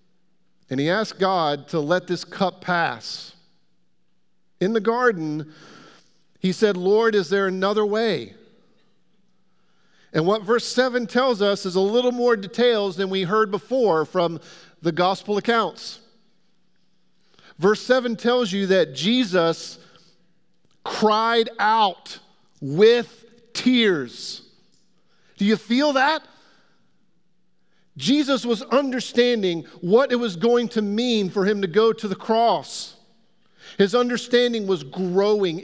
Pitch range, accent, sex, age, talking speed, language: 185-245 Hz, American, male, 50-69, 120 wpm, English